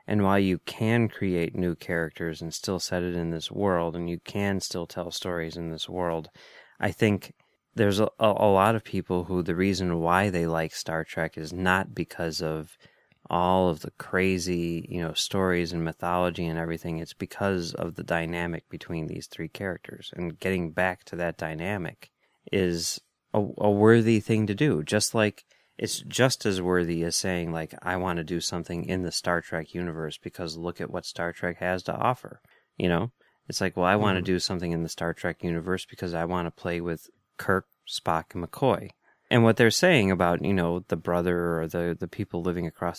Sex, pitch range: male, 85-100 Hz